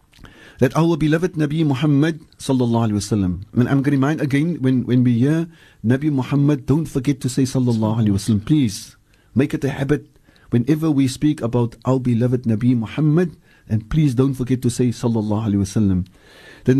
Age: 50-69